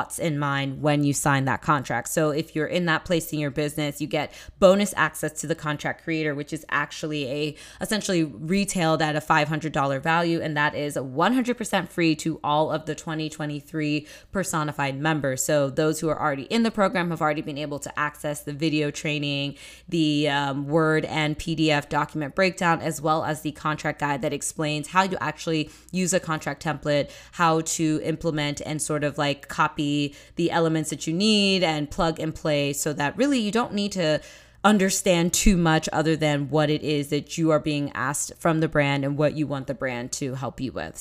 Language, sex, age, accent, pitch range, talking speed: English, female, 20-39, American, 145-165 Hz, 200 wpm